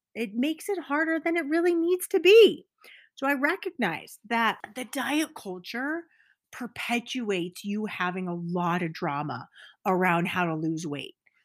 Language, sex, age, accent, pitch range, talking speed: English, female, 30-49, American, 200-280 Hz, 150 wpm